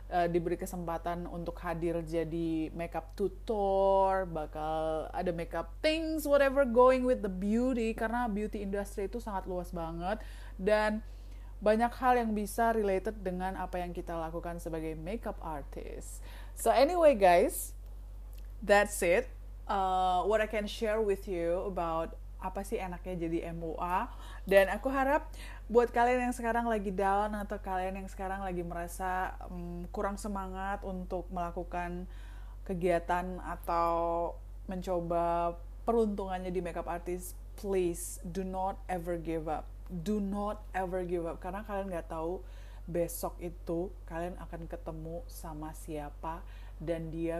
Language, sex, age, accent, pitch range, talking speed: Indonesian, female, 30-49, native, 170-200 Hz, 135 wpm